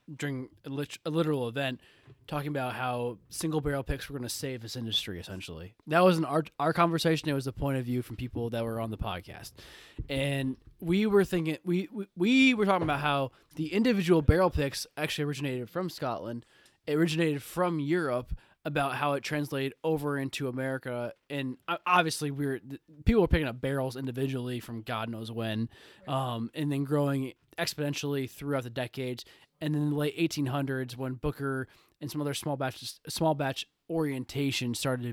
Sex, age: male, 20-39